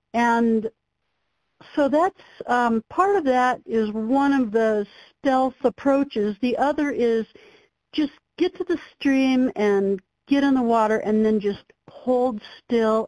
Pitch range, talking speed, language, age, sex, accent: 215-270 Hz, 140 wpm, English, 60-79, female, American